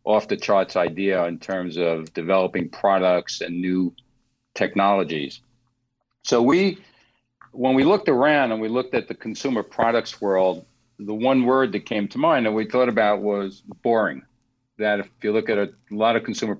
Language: English